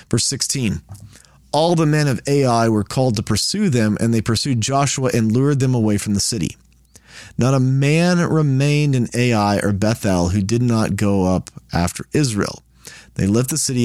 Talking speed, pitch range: 180 wpm, 100-135 Hz